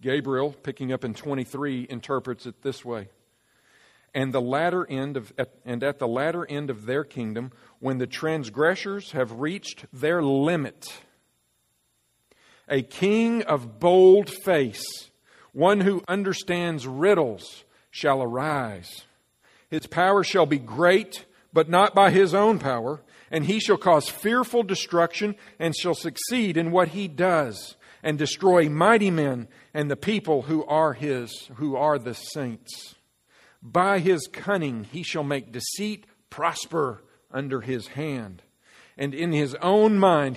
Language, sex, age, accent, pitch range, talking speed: English, male, 50-69, American, 125-180 Hz, 140 wpm